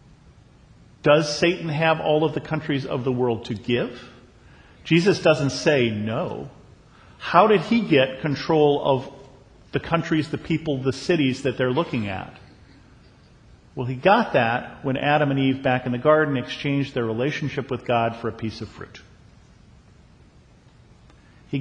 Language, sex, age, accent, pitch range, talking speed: English, male, 50-69, American, 120-150 Hz, 155 wpm